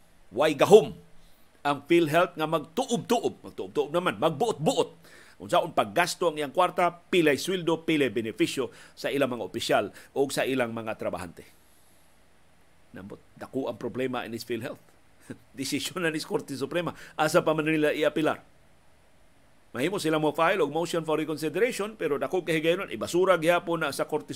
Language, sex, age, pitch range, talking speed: Filipino, male, 50-69, 120-165 Hz, 150 wpm